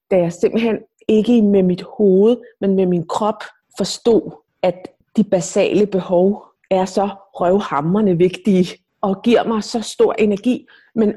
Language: Danish